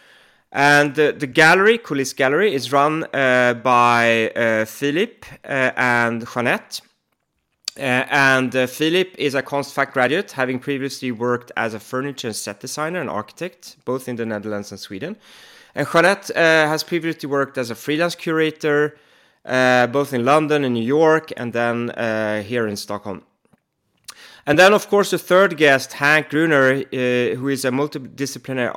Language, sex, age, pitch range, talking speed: English, male, 30-49, 115-145 Hz, 160 wpm